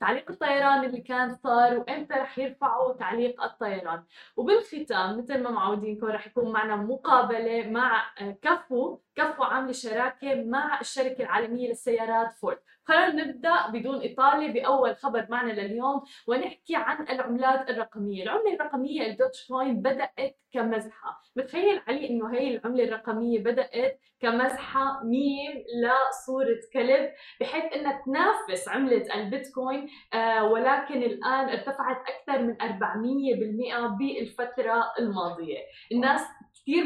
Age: 10-29